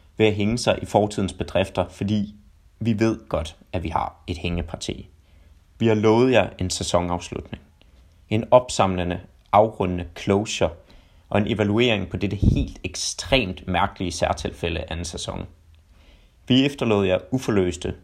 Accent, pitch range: native, 90-110 Hz